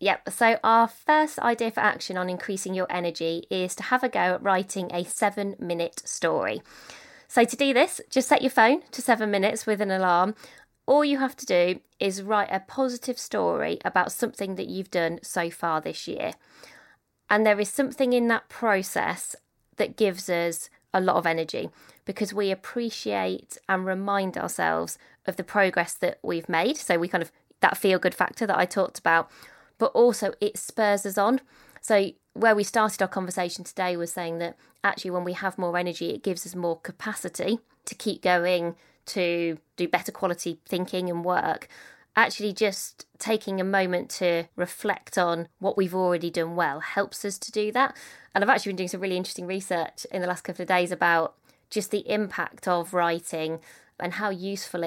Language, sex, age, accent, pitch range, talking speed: English, female, 20-39, British, 175-215 Hz, 190 wpm